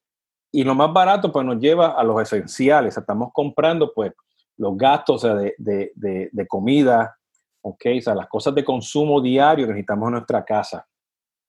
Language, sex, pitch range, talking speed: Spanish, male, 115-160 Hz, 190 wpm